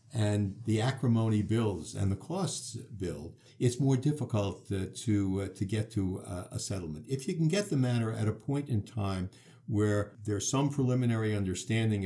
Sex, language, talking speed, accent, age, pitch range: male, English, 180 wpm, American, 60-79, 100-125 Hz